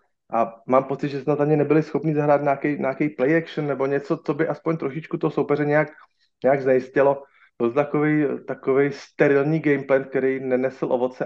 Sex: male